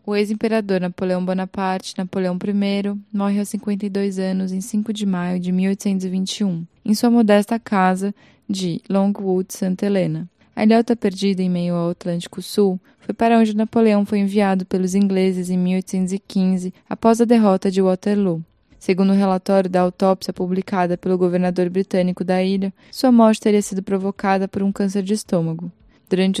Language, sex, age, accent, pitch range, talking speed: Portuguese, female, 10-29, Brazilian, 185-205 Hz, 155 wpm